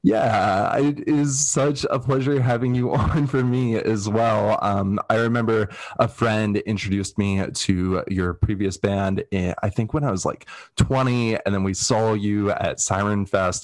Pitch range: 95-115 Hz